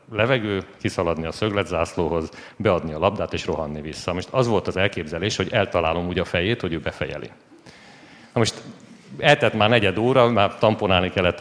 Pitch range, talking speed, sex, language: 95-125 Hz, 170 wpm, male, Hungarian